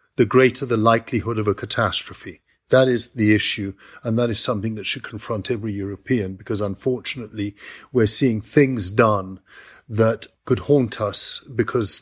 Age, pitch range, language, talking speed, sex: 50-69, 105-125 Hz, English, 155 wpm, male